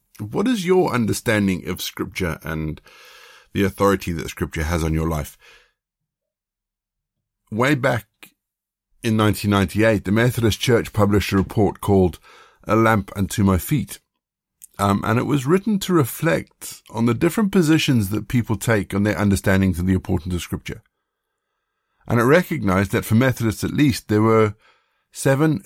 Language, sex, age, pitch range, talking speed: English, male, 50-69, 95-115 Hz, 150 wpm